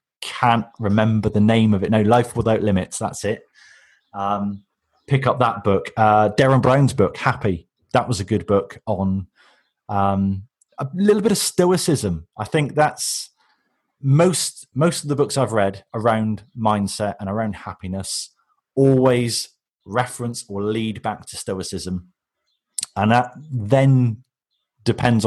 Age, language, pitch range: 30-49, English, 100-125 Hz